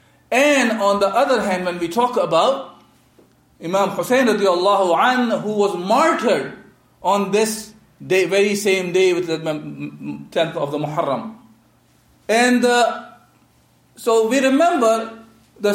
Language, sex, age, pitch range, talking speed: English, male, 50-69, 180-240 Hz, 130 wpm